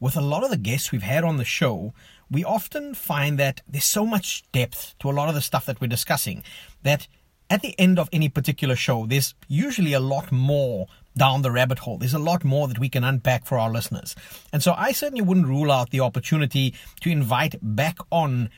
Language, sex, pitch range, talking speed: English, male, 130-175 Hz, 225 wpm